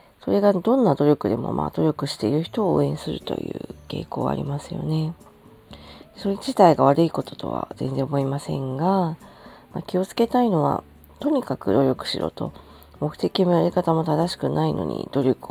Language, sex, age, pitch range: Japanese, female, 40-59, 130-190 Hz